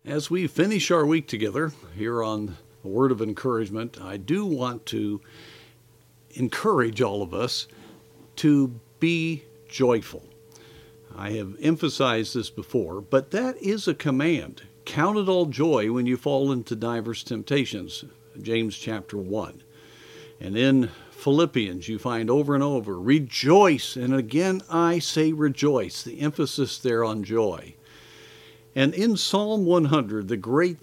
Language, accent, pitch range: English, American, 115-160 Hz